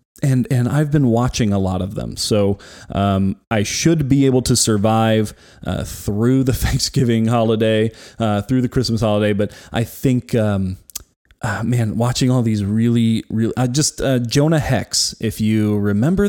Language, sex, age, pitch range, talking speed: English, male, 20-39, 110-130 Hz, 170 wpm